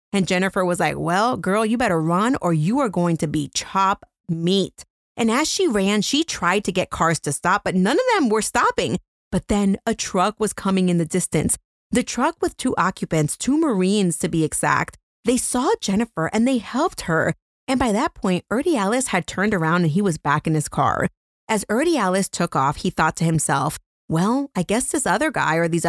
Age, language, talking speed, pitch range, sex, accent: 30-49, English, 215 wpm, 160-230 Hz, female, American